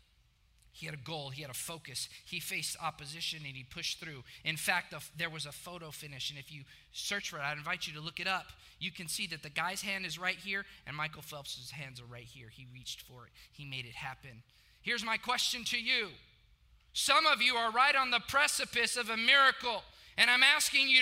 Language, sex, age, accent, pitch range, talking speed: English, male, 20-39, American, 160-240 Hz, 230 wpm